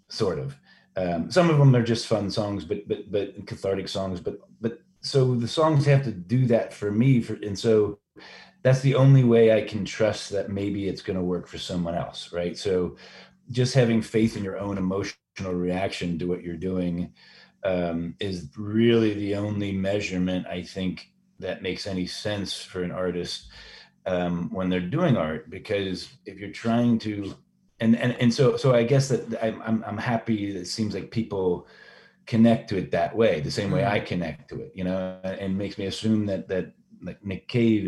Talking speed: 195 wpm